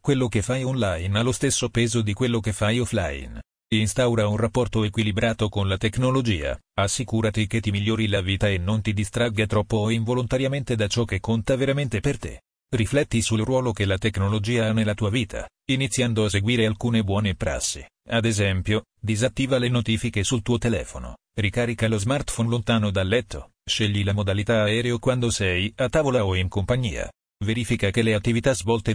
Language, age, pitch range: Italian, 40-59, 105-120 Hz